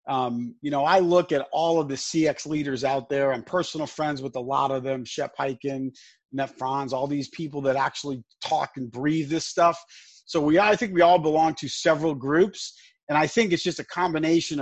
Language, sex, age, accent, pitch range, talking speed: English, male, 40-59, American, 135-175 Hz, 215 wpm